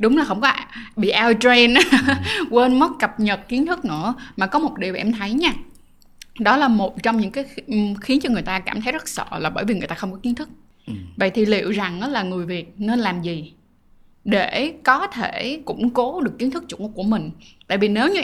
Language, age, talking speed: Vietnamese, 20-39, 230 wpm